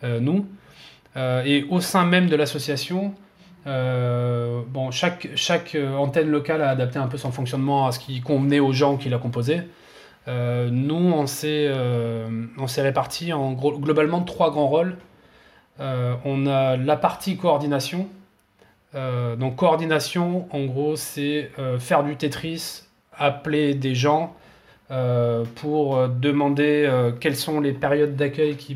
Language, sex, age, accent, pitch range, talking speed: French, male, 30-49, French, 130-155 Hz, 150 wpm